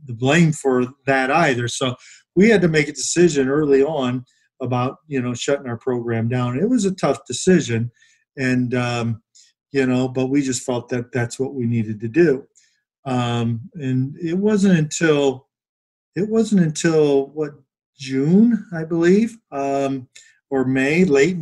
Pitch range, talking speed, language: 130-170 Hz, 155 wpm, English